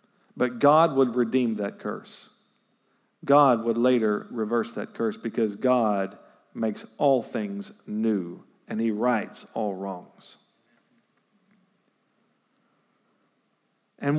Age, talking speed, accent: 50-69, 100 wpm, American